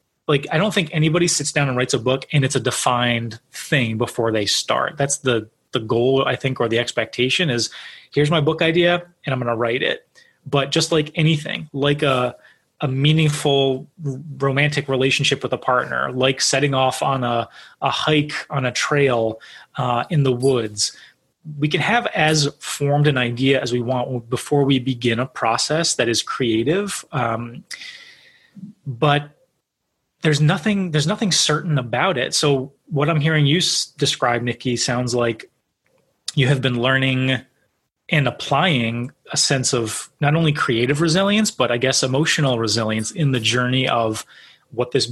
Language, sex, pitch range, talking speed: English, male, 125-155 Hz, 170 wpm